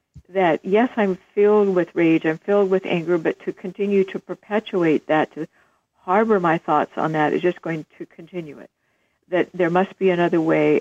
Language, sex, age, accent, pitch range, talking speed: English, female, 60-79, American, 155-180 Hz, 190 wpm